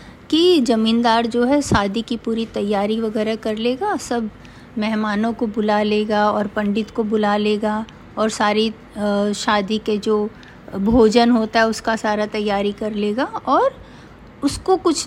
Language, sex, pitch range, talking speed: Hindi, female, 210-255 Hz, 145 wpm